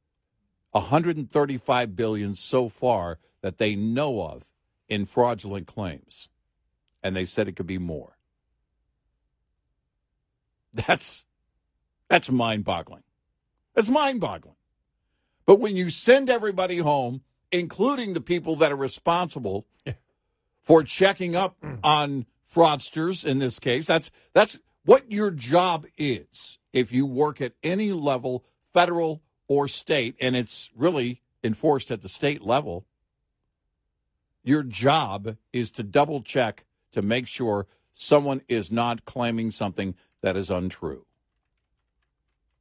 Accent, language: American, English